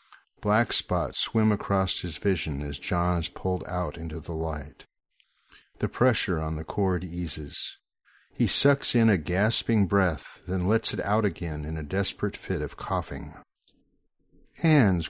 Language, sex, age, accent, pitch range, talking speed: English, male, 60-79, American, 85-110 Hz, 150 wpm